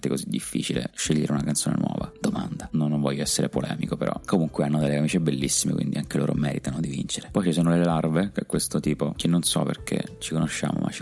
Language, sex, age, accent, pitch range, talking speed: Italian, male, 30-49, native, 75-80 Hz, 225 wpm